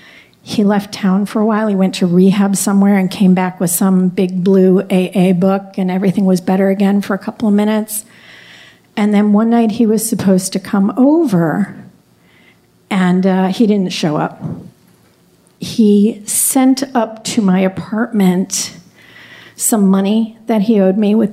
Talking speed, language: 165 wpm, English